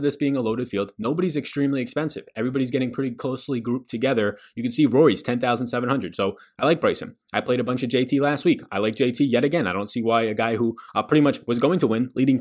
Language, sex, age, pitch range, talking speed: English, male, 20-39, 110-140 Hz, 245 wpm